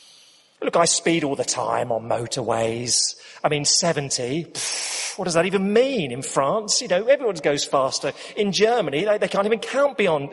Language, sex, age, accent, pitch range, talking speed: English, male, 30-49, British, 145-230 Hz, 185 wpm